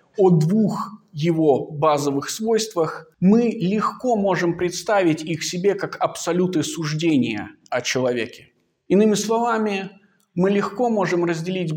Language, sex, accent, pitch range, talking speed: Russian, male, native, 155-195 Hz, 110 wpm